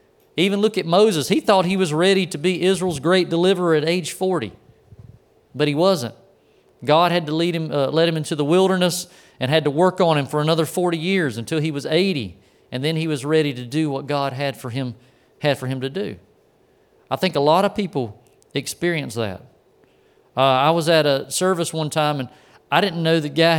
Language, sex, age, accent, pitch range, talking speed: English, male, 40-59, American, 150-185 Hz, 215 wpm